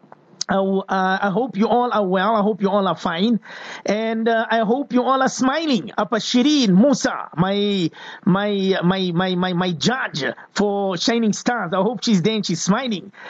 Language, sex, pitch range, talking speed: English, male, 185-225 Hz, 190 wpm